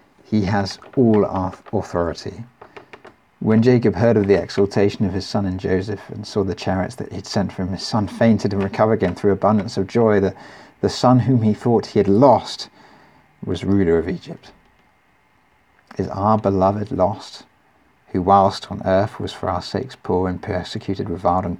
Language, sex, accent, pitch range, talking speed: English, male, British, 95-120 Hz, 180 wpm